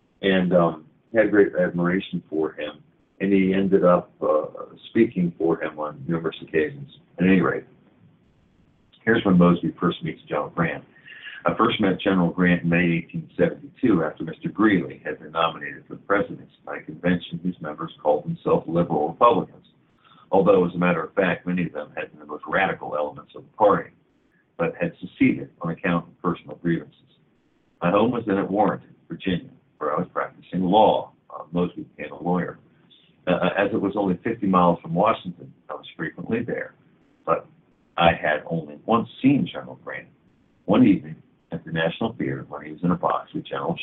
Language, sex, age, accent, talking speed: English, male, 50-69, American, 180 wpm